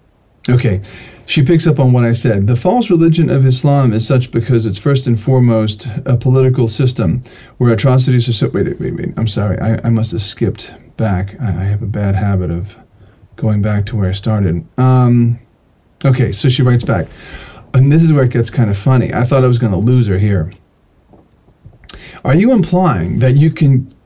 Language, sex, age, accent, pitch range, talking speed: English, male, 40-59, American, 110-135 Hz, 200 wpm